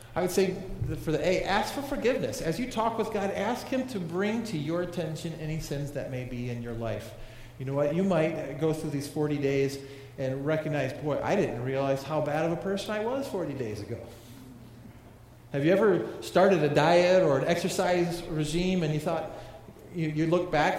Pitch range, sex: 130-175 Hz, male